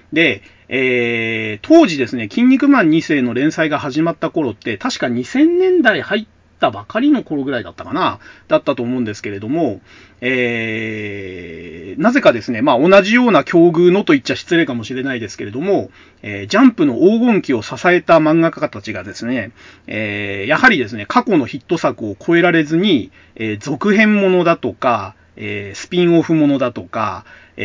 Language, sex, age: Japanese, male, 40-59